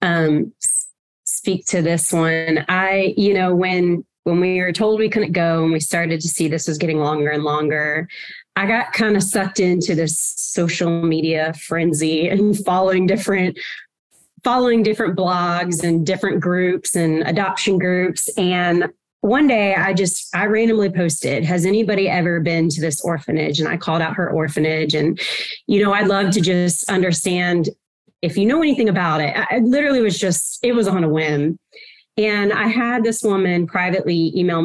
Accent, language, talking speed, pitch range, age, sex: American, English, 175 wpm, 165-200 Hz, 30-49, female